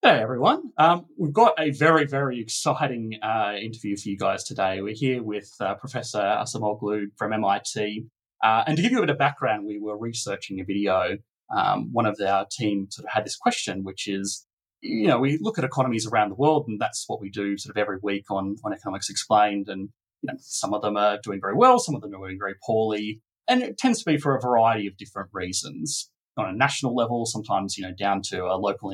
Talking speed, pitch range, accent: 230 wpm, 100-135 Hz, Australian